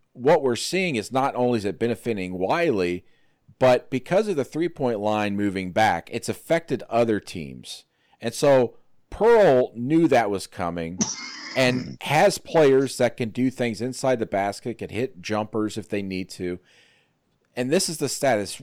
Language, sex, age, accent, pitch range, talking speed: English, male, 40-59, American, 95-130 Hz, 165 wpm